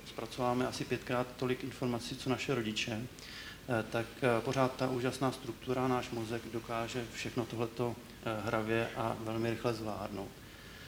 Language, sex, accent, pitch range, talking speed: Czech, male, native, 115-130 Hz, 125 wpm